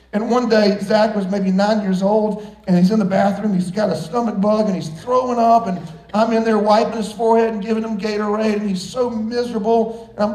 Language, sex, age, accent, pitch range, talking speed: English, male, 40-59, American, 200-250 Hz, 230 wpm